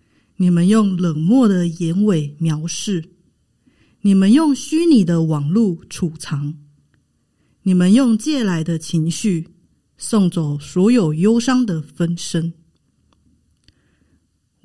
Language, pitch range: Chinese, 160-210 Hz